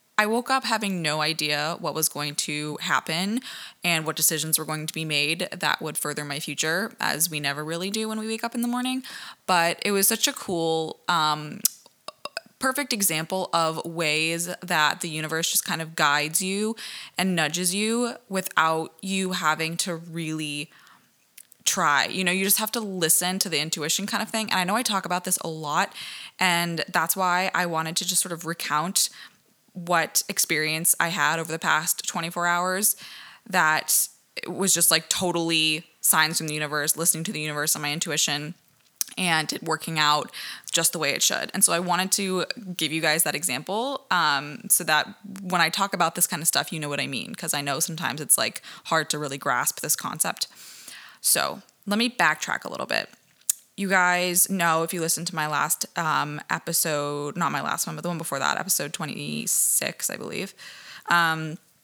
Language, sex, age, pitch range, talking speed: English, female, 20-39, 155-190 Hz, 195 wpm